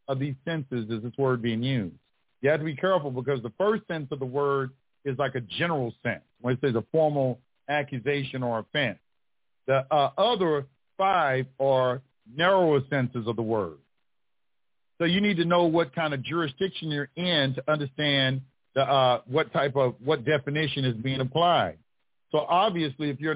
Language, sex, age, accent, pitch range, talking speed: English, male, 50-69, American, 135-175 Hz, 175 wpm